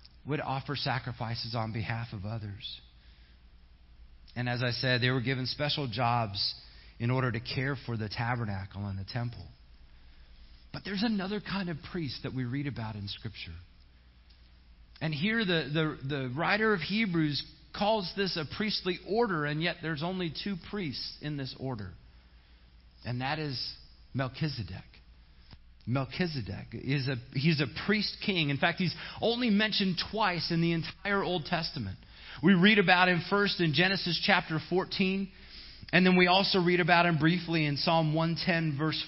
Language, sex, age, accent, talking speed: English, male, 40-59, American, 155 wpm